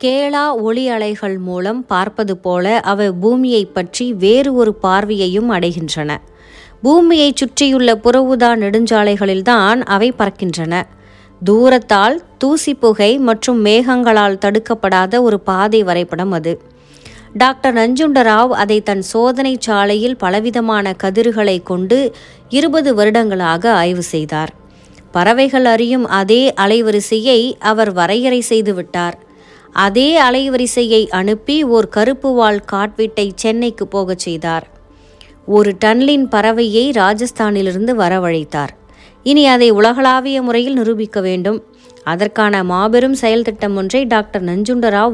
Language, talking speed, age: Tamil, 100 wpm, 30-49